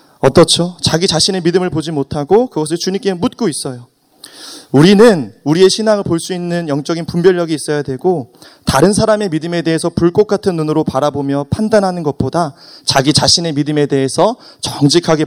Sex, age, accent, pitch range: male, 30-49, native, 135-170 Hz